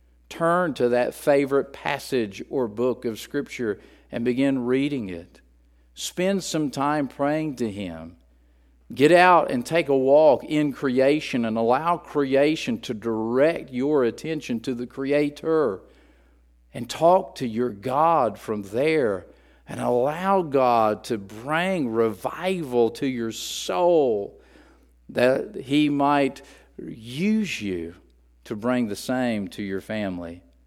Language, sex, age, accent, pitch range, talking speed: English, male, 50-69, American, 90-145 Hz, 125 wpm